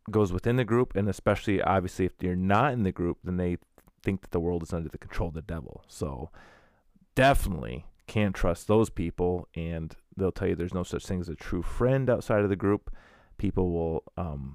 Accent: American